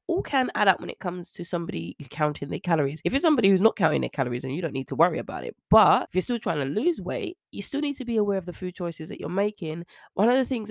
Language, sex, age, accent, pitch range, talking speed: English, female, 20-39, British, 160-200 Hz, 290 wpm